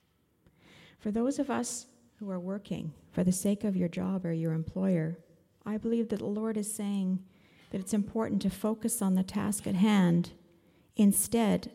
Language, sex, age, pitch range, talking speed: English, female, 50-69, 170-205 Hz, 175 wpm